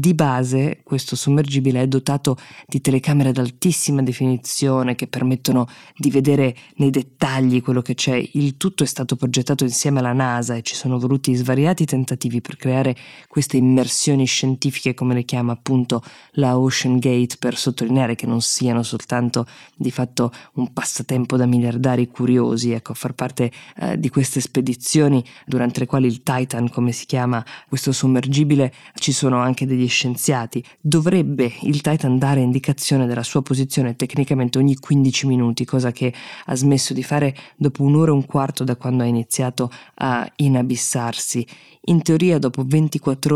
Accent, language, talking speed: native, Italian, 160 wpm